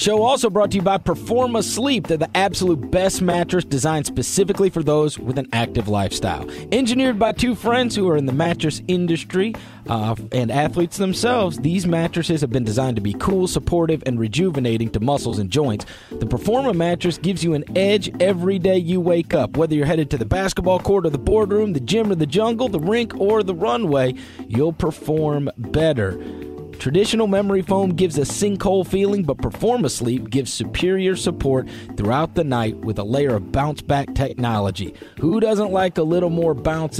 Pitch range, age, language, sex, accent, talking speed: 130-190 Hz, 40-59, English, male, American, 185 wpm